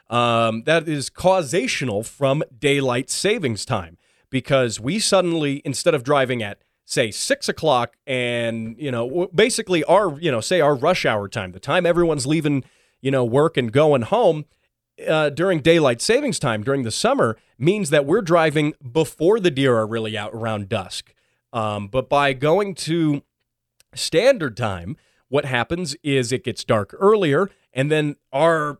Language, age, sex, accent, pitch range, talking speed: English, 30-49, male, American, 115-165 Hz, 160 wpm